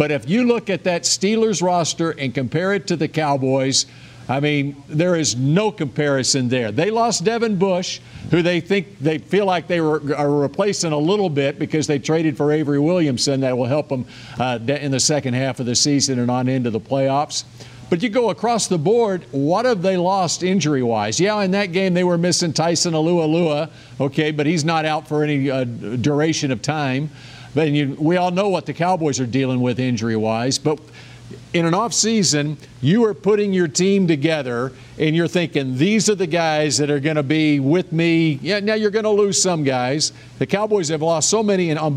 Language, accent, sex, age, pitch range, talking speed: English, American, male, 50-69, 135-180 Hz, 200 wpm